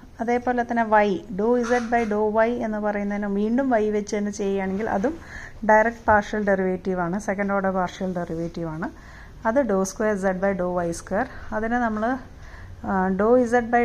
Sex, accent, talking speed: female, native, 165 wpm